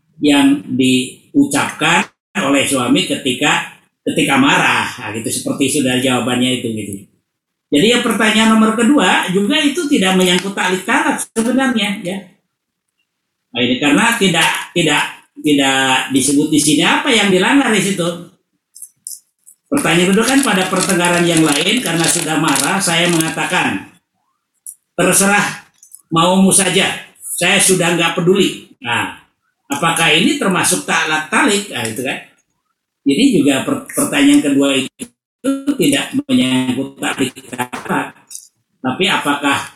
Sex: male